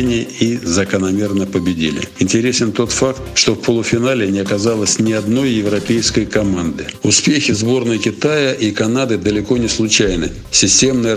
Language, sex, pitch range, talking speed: Russian, male, 100-120 Hz, 130 wpm